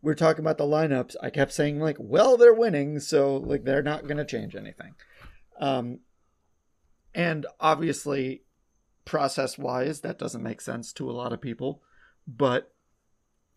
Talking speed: 155 wpm